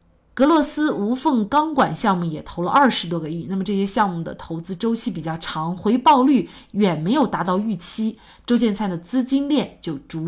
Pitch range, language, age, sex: 170-245 Hz, Chinese, 30-49, female